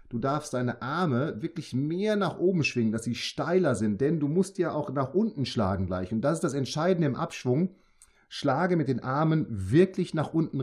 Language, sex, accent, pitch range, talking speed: German, male, German, 115-170 Hz, 205 wpm